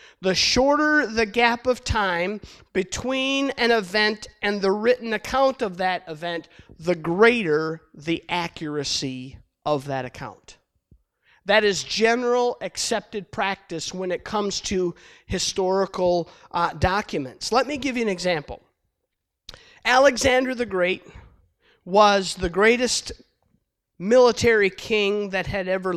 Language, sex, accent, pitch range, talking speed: English, male, American, 185-235 Hz, 120 wpm